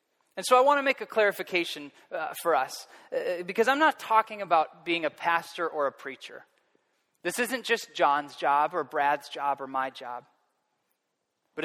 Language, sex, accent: English, male, American